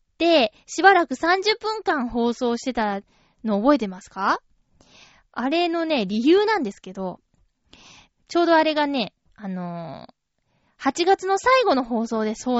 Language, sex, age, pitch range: Japanese, female, 20-39, 195-290 Hz